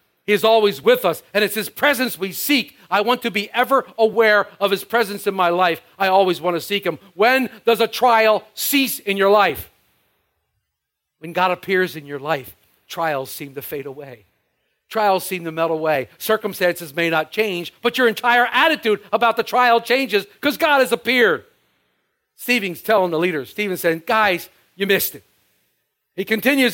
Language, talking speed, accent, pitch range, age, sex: English, 180 wpm, American, 190-240 Hz, 50-69, male